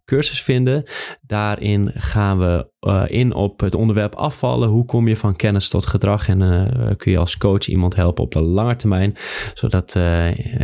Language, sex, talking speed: Dutch, male, 180 wpm